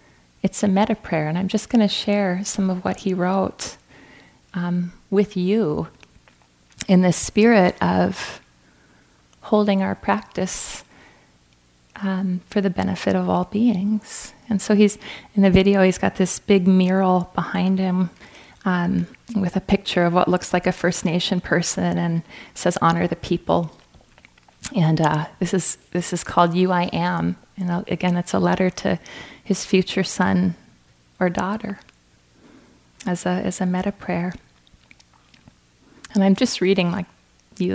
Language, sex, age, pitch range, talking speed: English, female, 30-49, 170-195 Hz, 150 wpm